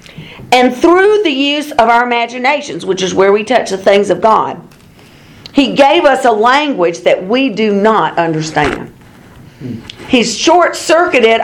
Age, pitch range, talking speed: 50-69, 220-300 Hz, 145 wpm